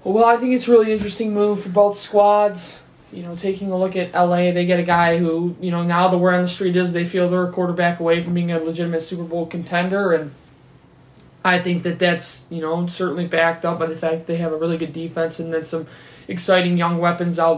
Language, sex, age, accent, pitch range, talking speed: English, male, 20-39, American, 170-195 Hz, 245 wpm